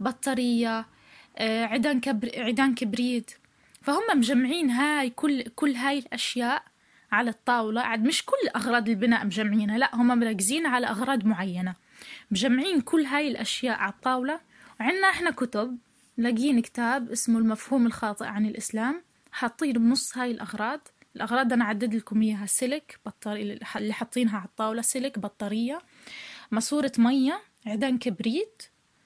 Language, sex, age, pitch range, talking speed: Arabic, female, 20-39, 225-285 Hz, 130 wpm